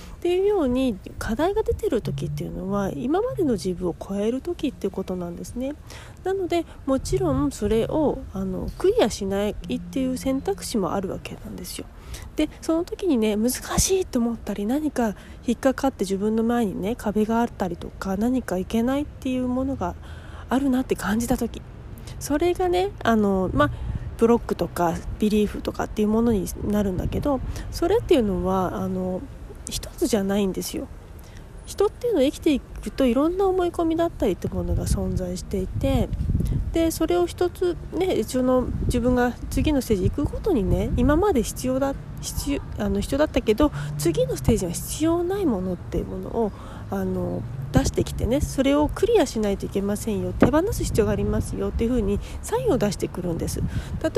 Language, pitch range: Japanese, 195-310 Hz